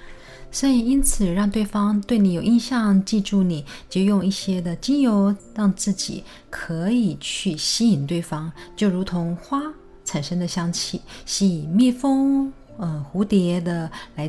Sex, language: female, Chinese